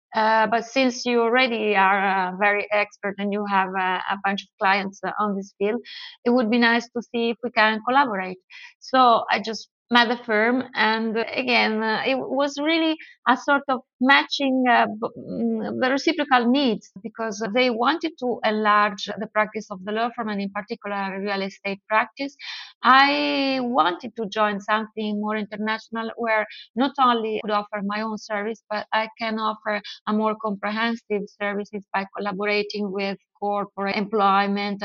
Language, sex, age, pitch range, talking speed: English, female, 30-49, 210-245 Hz, 170 wpm